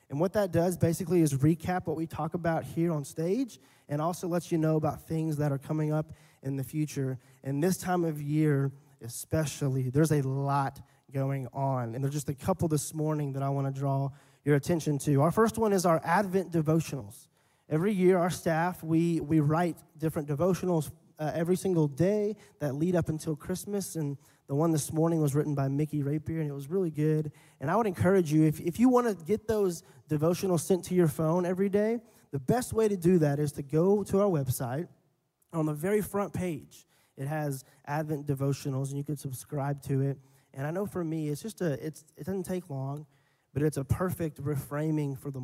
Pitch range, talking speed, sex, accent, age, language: 140-170 Hz, 215 wpm, male, American, 20-39, English